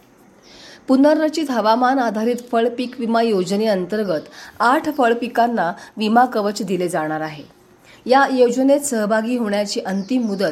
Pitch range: 195-250 Hz